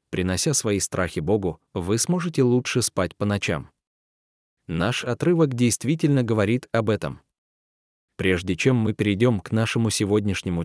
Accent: native